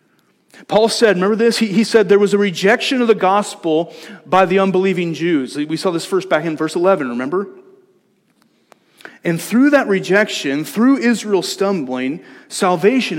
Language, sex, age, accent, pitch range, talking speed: English, male, 40-59, American, 165-225 Hz, 160 wpm